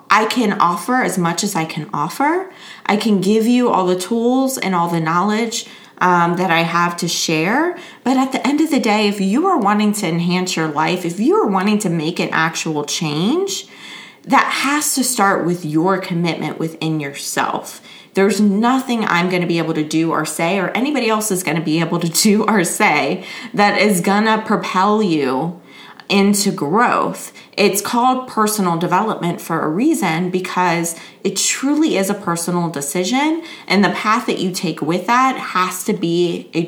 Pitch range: 170-220 Hz